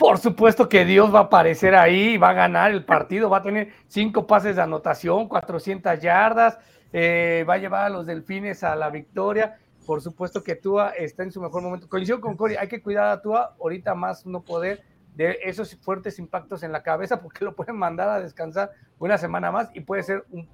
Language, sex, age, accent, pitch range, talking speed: Spanish, male, 40-59, Mexican, 170-225 Hz, 215 wpm